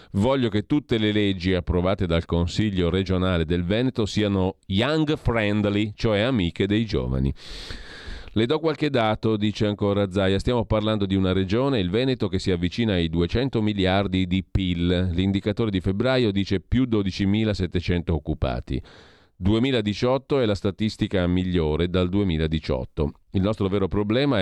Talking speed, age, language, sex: 145 wpm, 40-59, Italian, male